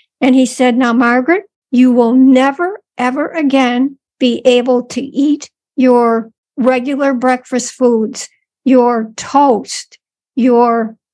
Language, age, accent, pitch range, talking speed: English, 60-79, American, 245-280 Hz, 115 wpm